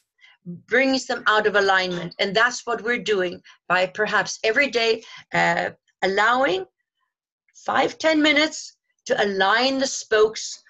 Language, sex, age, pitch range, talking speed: English, female, 50-69, 205-270 Hz, 130 wpm